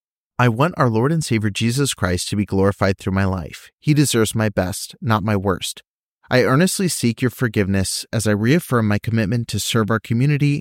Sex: male